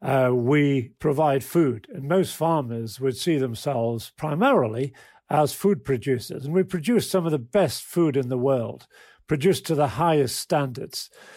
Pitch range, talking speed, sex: 130-165 Hz, 160 wpm, male